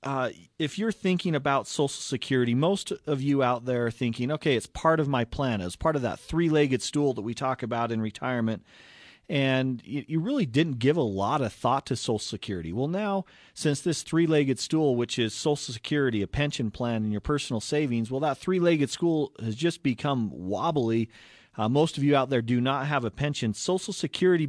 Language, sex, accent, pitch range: English, male, American, 120-150 Hz